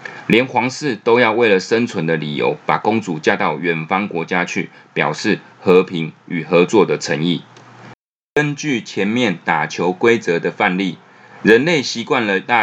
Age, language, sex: 20-39, Chinese, male